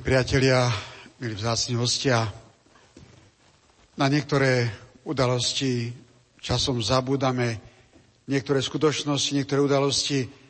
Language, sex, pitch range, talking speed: Slovak, male, 125-140 Hz, 75 wpm